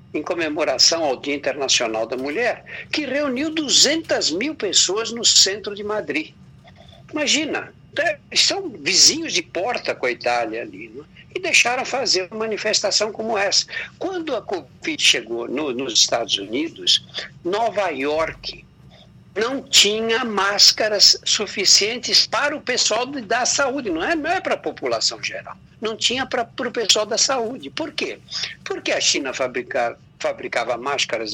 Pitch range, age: 215-315 Hz, 60-79